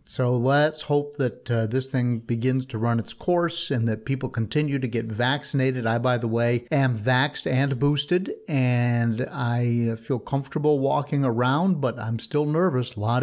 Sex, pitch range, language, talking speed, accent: male, 120-145 Hz, English, 175 wpm, American